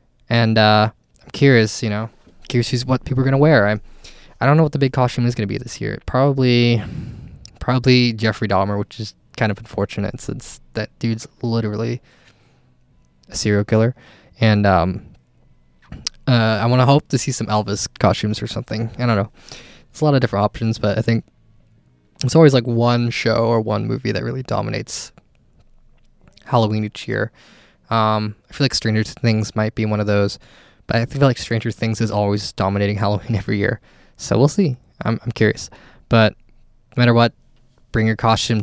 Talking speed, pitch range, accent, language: 185 wpm, 105-125 Hz, American, English